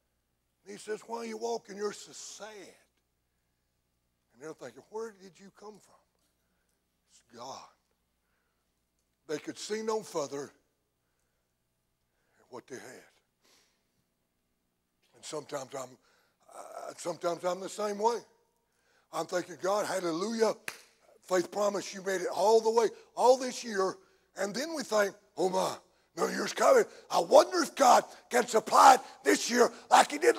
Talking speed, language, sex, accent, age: 145 wpm, English, male, American, 60-79